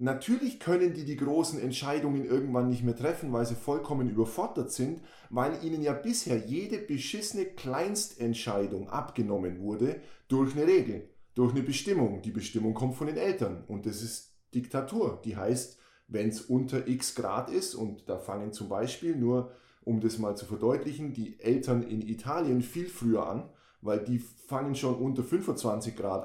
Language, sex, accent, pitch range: German, male, German, 115-140 Hz